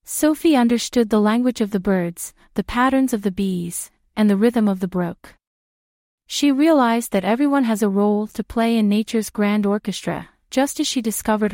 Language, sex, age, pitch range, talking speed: English, female, 40-59, 195-250 Hz, 180 wpm